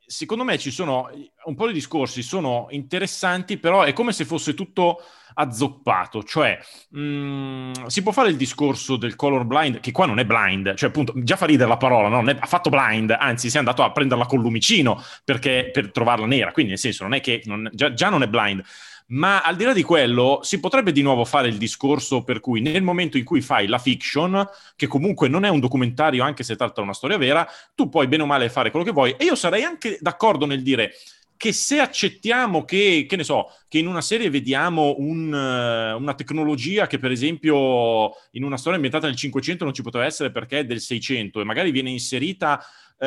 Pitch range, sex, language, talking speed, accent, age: 120-160 Hz, male, Italian, 215 wpm, native, 30-49